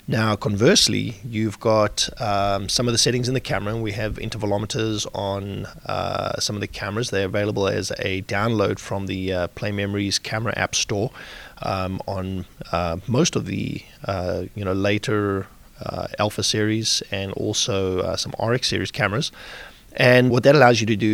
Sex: male